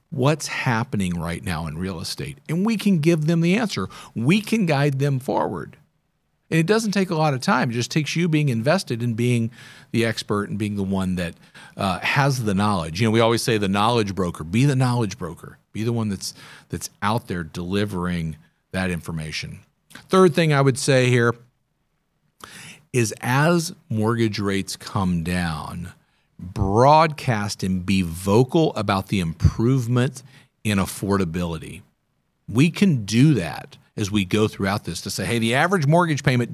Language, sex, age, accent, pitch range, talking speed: English, male, 50-69, American, 100-145 Hz, 175 wpm